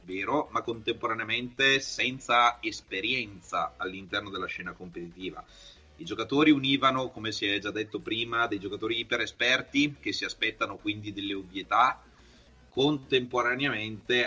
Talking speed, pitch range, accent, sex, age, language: 120 wpm, 100-140 Hz, native, male, 30-49, Italian